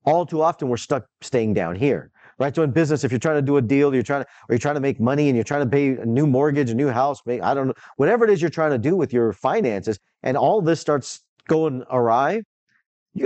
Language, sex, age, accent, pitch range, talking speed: English, male, 40-59, American, 120-160 Hz, 265 wpm